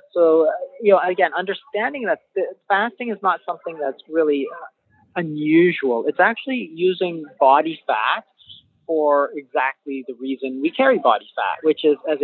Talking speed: 140 wpm